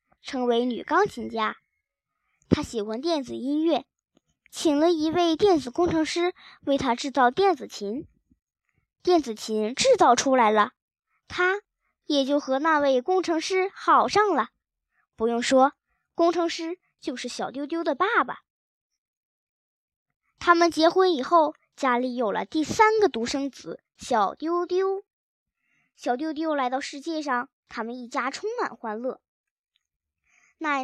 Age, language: 10-29, Chinese